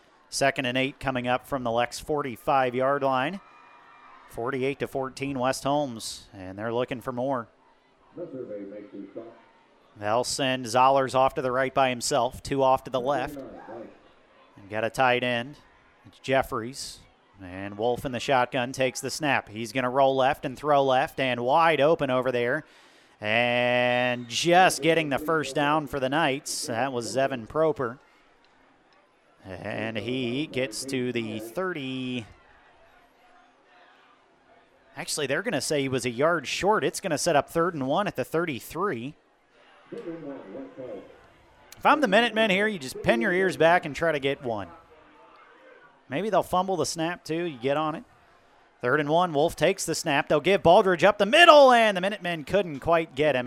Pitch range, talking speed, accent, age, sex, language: 125-160 Hz, 165 wpm, American, 40-59, male, English